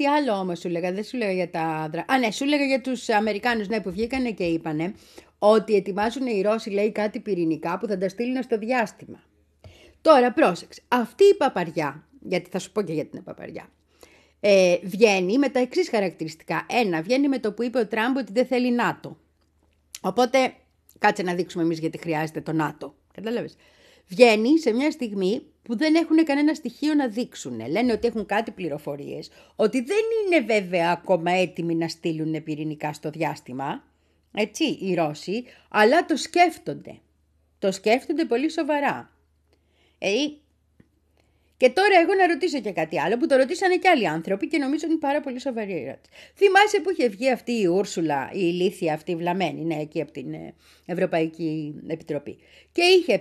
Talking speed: 175 wpm